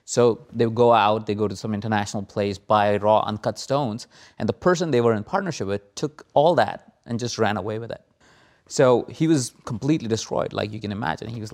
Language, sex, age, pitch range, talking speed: English, male, 20-39, 105-125 Hz, 225 wpm